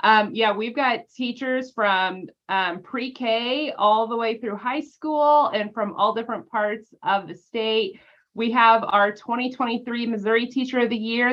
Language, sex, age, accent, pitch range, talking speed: English, female, 30-49, American, 195-235 Hz, 165 wpm